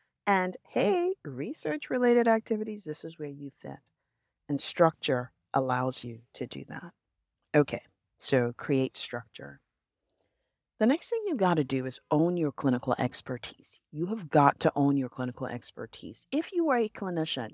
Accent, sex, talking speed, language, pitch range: American, female, 155 wpm, English, 135-185 Hz